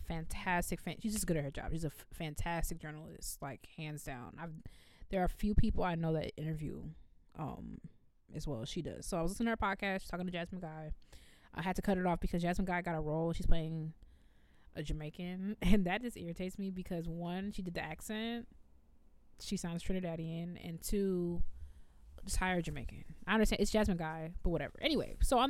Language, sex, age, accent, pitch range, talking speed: English, female, 20-39, American, 155-190 Hz, 205 wpm